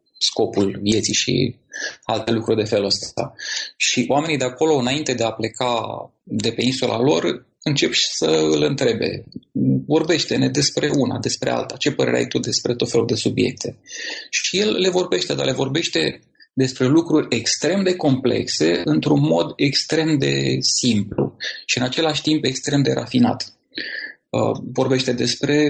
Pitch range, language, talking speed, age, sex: 110-140 Hz, Romanian, 150 wpm, 30-49, male